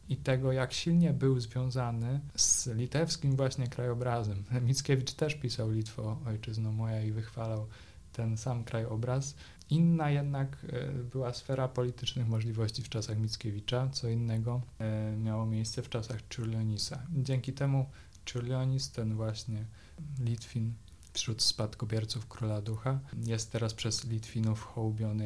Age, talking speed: 20-39, 125 wpm